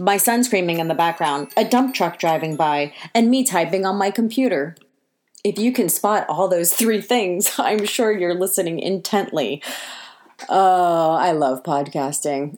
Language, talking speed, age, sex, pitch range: English, 160 wpm, 30-49, female, 170-220 Hz